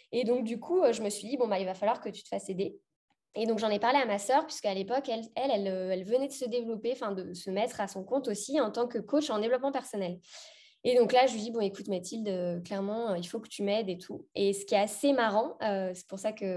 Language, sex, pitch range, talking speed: French, female, 190-245 Hz, 290 wpm